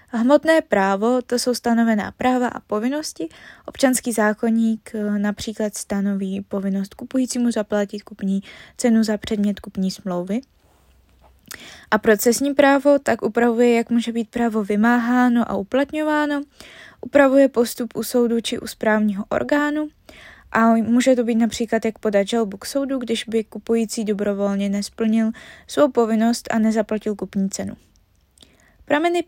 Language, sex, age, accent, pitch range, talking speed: Czech, female, 20-39, native, 215-255 Hz, 130 wpm